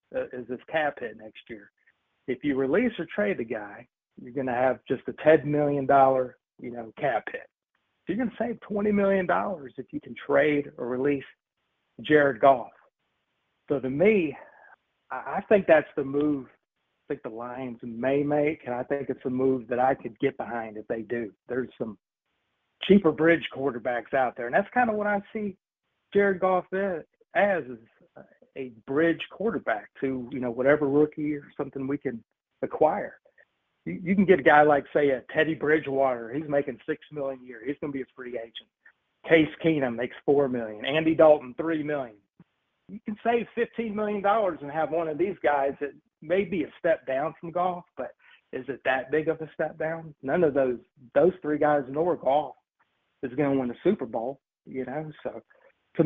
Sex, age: male, 40-59